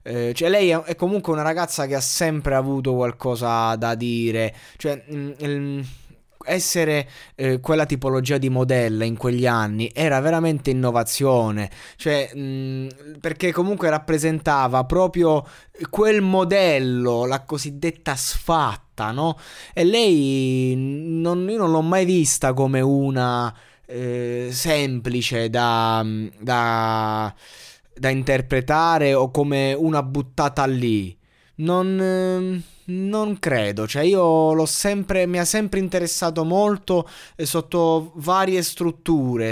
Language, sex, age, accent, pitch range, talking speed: Italian, male, 20-39, native, 125-165 Hz, 110 wpm